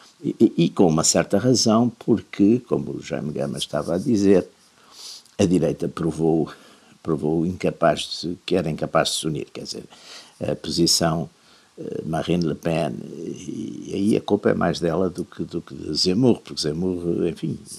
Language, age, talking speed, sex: Portuguese, 60-79, 170 wpm, male